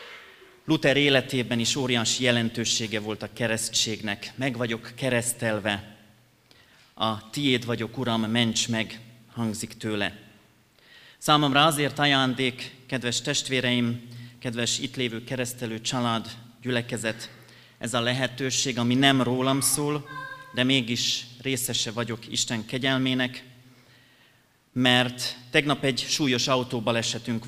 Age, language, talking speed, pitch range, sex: 30-49, Hungarian, 105 wpm, 115-130 Hz, male